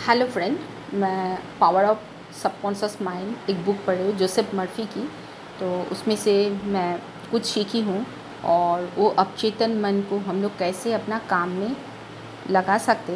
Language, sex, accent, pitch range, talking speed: Hindi, female, native, 185-230 Hz, 155 wpm